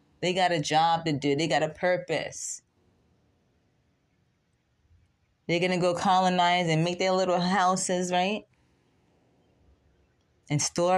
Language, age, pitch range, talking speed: English, 20-39, 155-185 Hz, 125 wpm